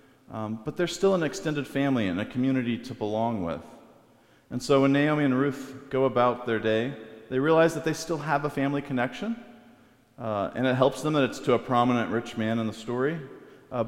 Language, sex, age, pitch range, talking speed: English, male, 40-59, 110-135 Hz, 210 wpm